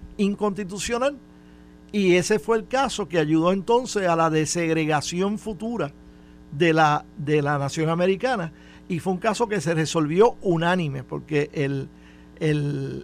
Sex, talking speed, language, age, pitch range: male, 140 wpm, Spanish, 50-69, 150-200 Hz